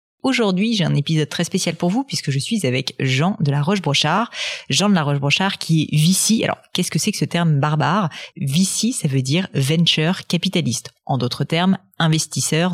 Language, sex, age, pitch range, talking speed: French, female, 30-49, 145-190 Hz, 195 wpm